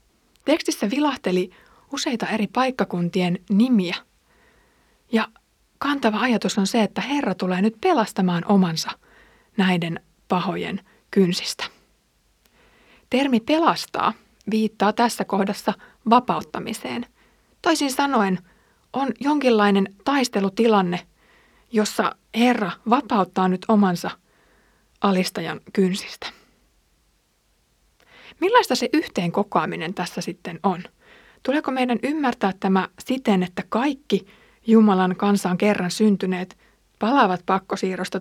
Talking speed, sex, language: 90 wpm, female, Finnish